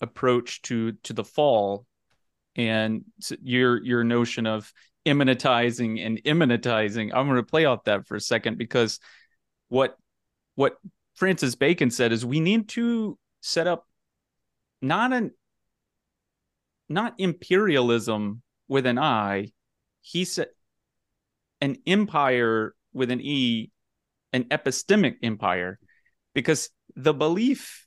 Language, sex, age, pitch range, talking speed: English, male, 30-49, 110-145 Hz, 115 wpm